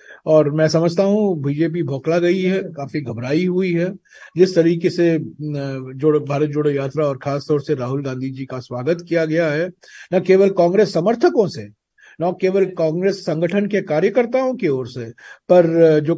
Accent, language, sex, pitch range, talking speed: native, Hindi, male, 145-190 Hz, 170 wpm